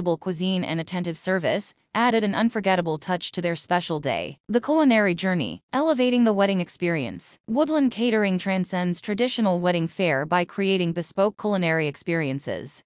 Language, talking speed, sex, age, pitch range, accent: English, 140 wpm, female, 30-49, 170-215 Hz, American